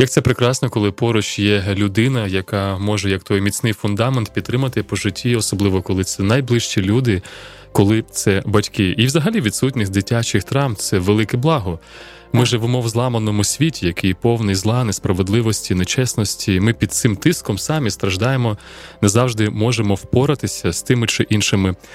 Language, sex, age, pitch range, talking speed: Ukrainian, male, 20-39, 100-125 Hz, 155 wpm